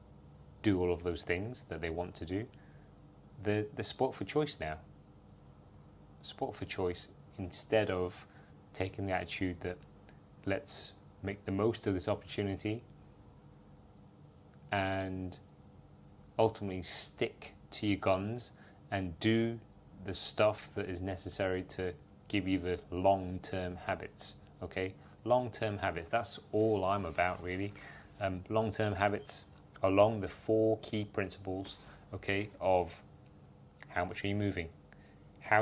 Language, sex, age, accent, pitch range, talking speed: English, male, 30-49, British, 90-105 Hz, 130 wpm